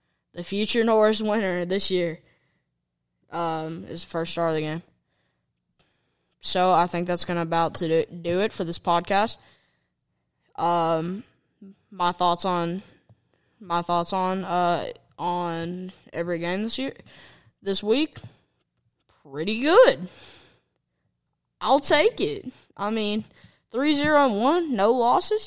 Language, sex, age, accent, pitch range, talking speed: English, female, 10-29, American, 170-200 Hz, 130 wpm